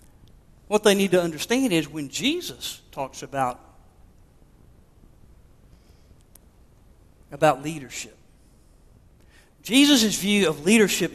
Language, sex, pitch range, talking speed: English, male, 135-195 Hz, 85 wpm